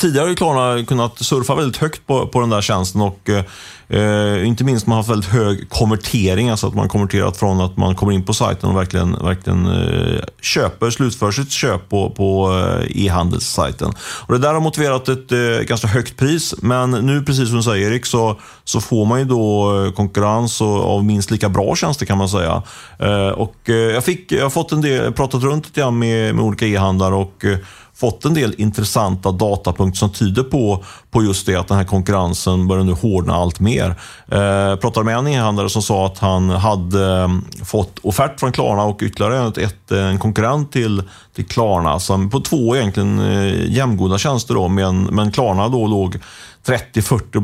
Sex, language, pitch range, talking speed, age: male, Swedish, 95-120 Hz, 195 wpm, 30-49